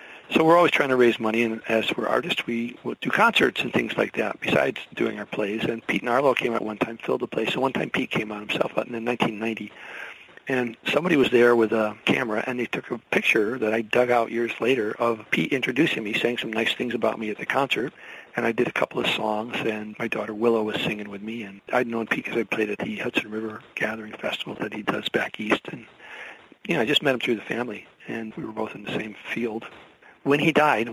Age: 40-59